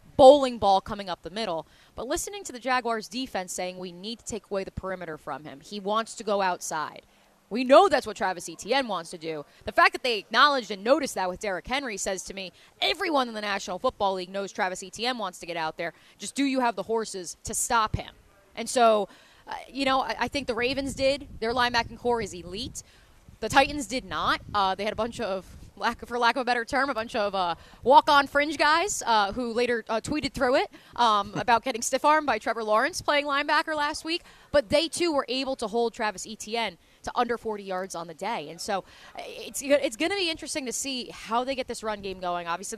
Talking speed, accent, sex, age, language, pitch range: 230 wpm, American, female, 20-39, English, 195-270 Hz